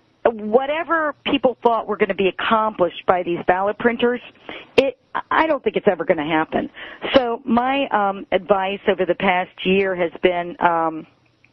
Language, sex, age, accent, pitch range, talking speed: English, female, 50-69, American, 175-220 Hz, 165 wpm